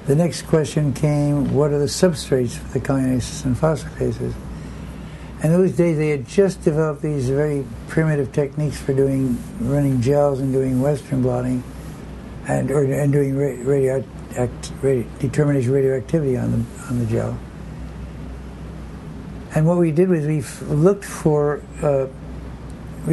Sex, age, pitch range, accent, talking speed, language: male, 60-79, 130-155 Hz, American, 140 wpm, English